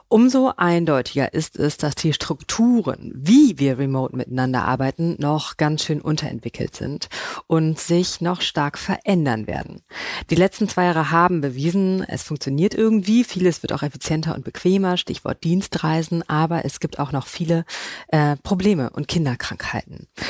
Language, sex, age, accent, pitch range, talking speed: German, female, 30-49, German, 140-170 Hz, 150 wpm